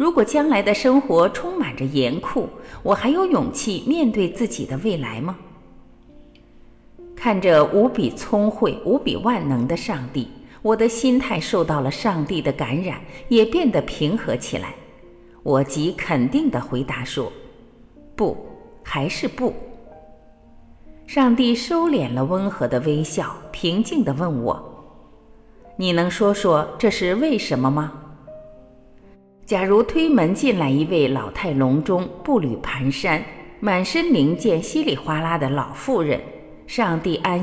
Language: Chinese